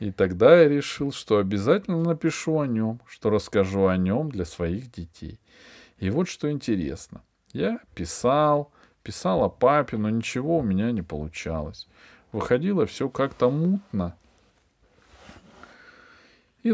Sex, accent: male, native